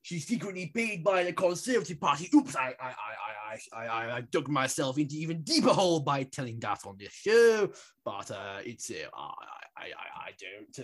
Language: English